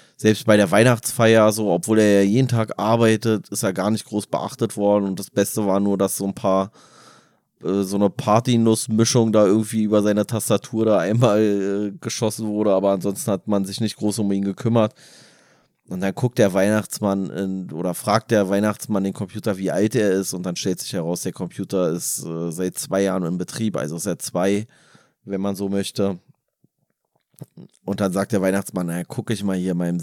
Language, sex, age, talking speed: German, male, 20-39, 200 wpm